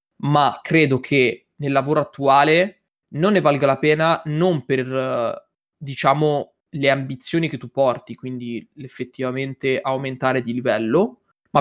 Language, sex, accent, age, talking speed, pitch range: Italian, male, native, 20-39, 130 wpm, 125-150 Hz